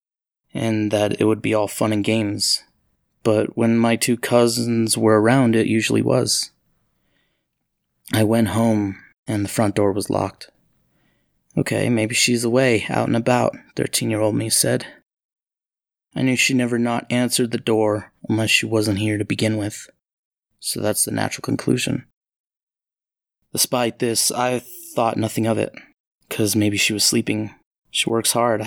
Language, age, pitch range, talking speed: English, 20-39, 105-115 Hz, 155 wpm